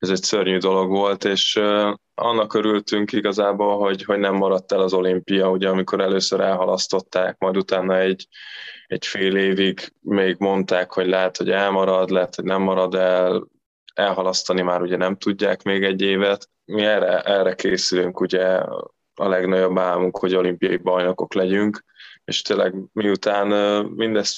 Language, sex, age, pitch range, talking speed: Hungarian, male, 20-39, 90-95 Hz, 150 wpm